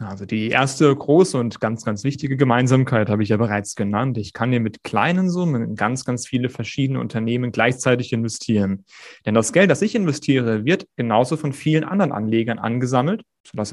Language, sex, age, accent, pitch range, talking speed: German, male, 30-49, German, 115-150 Hz, 180 wpm